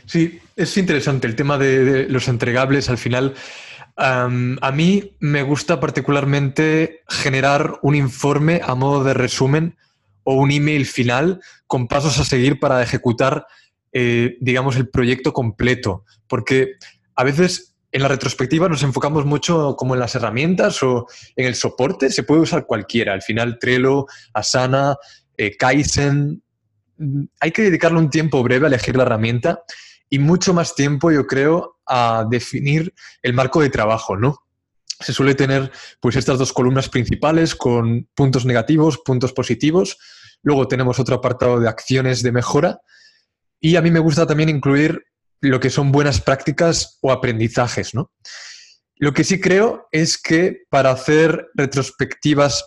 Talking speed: 150 wpm